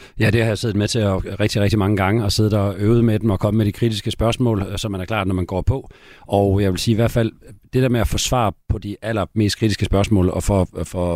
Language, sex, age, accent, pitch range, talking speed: Danish, male, 40-59, native, 100-125 Hz, 280 wpm